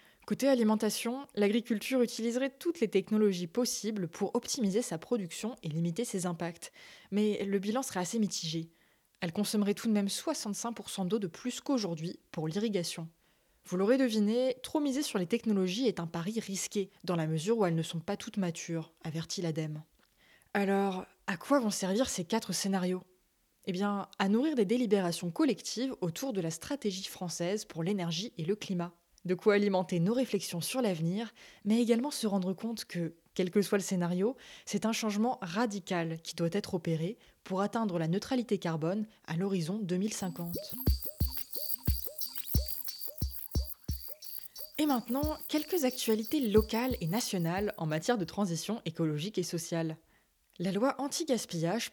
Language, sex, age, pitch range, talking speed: French, female, 20-39, 175-230 Hz, 155 wpm